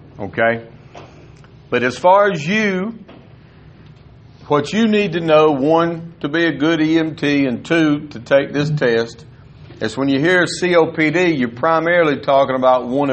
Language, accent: English, American